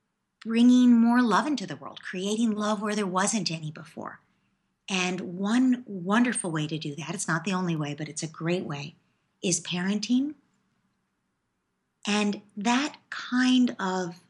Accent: American